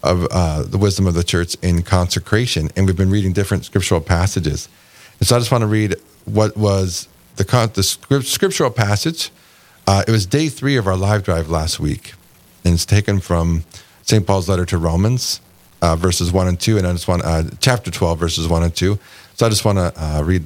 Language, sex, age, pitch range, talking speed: English, male, 40-59, 90-115 Hz, 210 wpm